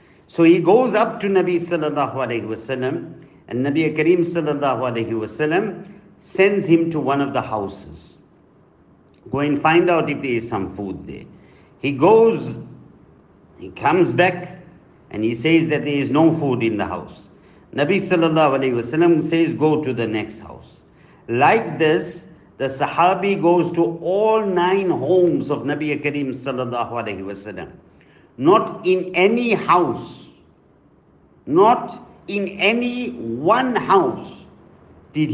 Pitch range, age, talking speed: 130-180 Hz, 50-69, 145 wpm